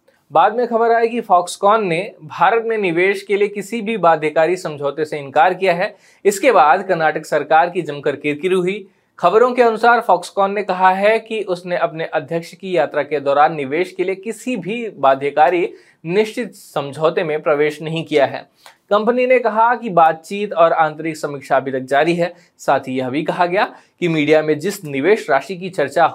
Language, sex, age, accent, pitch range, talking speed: Hindi, male, 20-39, native, 150-190 Hz, 190 wpm